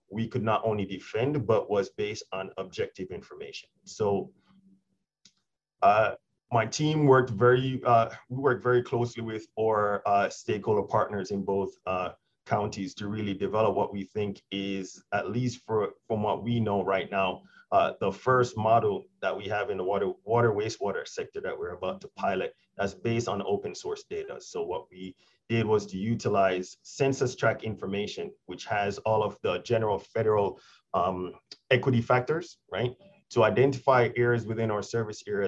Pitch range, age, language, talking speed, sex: 100-145 Hz, 30-49, English, 165 wpm, male